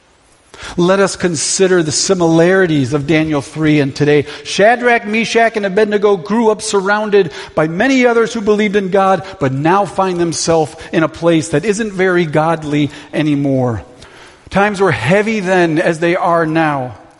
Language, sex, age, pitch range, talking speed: English, male, 40-59, 140-185 Hz, 155 wpm